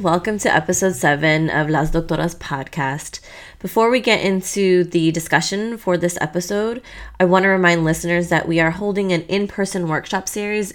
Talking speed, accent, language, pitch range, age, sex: 160 wpm, American, English, 155-190 Hz, 20-39, female